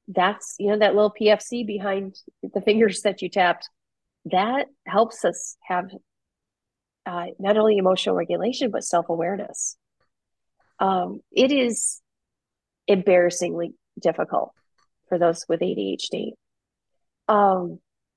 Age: 30-49